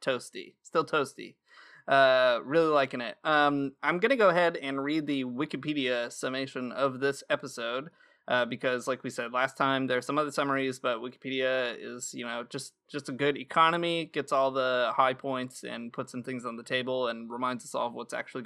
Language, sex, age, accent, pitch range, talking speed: English, male, 20-39, American, 130-155 Hz, 195 wpm